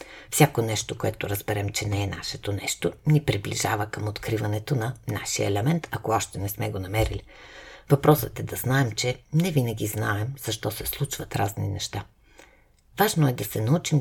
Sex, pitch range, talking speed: female, 105-135 Hz, 170 wpm